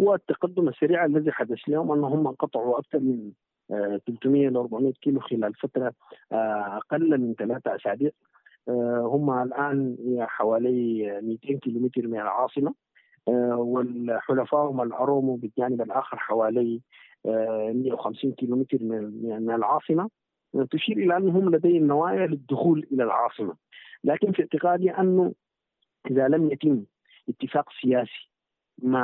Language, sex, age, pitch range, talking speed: Arabic, male, 50-69, 120-150 Hz, 110 wpm